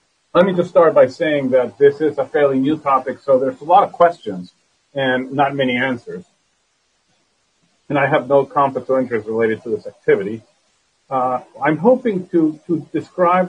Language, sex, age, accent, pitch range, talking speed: English, male, 40-59, American, 135-170 Hz, 180 wpm